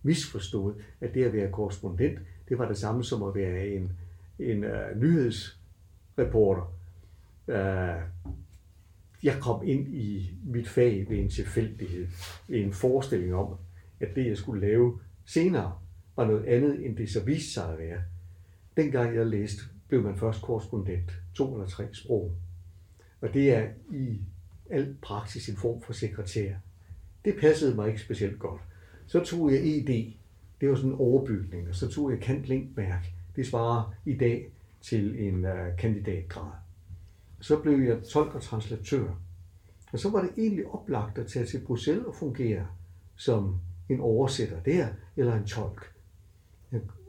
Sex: male